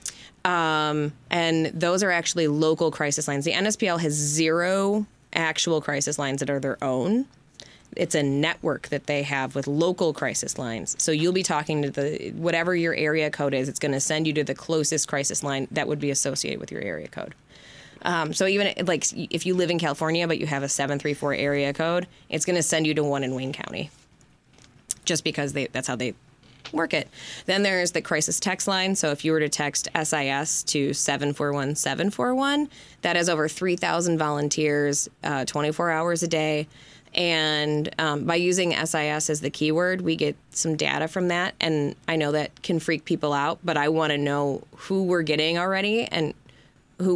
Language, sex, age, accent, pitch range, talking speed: English, female, 20-39, American, 145-170 Hz, 190 wpm